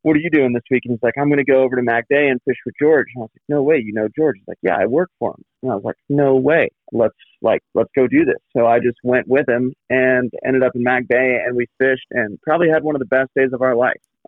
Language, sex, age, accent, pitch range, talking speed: English, male, 30-49, American, 115-130 Hz, 315 wpm